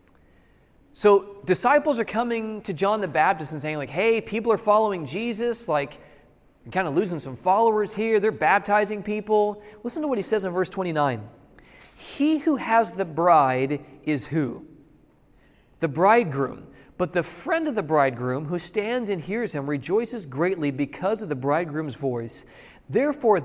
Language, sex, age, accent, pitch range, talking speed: English, male, 40-59, American, 150-215 Hz, 160 wpm